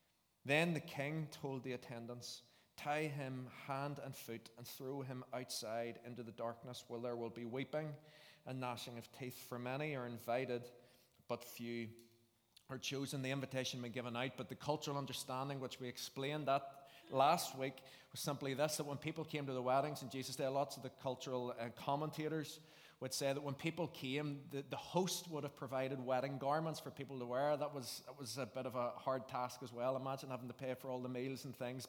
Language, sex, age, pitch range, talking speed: English, male, 30-49, 125-145 Hz, 205 wpm